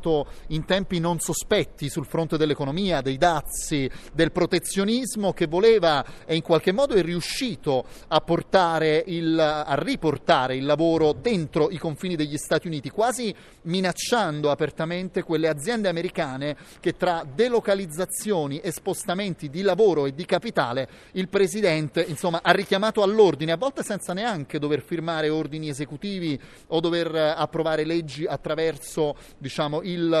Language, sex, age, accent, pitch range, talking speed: Italian, male, 30-49, native, 150-185 Hz, 135 wpm